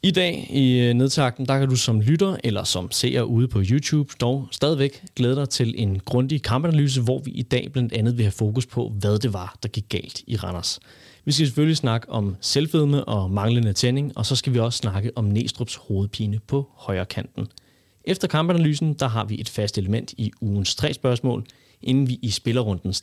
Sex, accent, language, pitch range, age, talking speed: male, native, Danish, 105-135 Hz, 30-49, 205 wpm